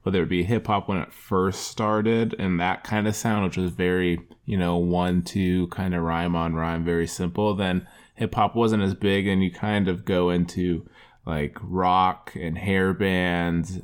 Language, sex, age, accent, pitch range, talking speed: English, male, 20-39, American, 90-100 Hz, 180 wpm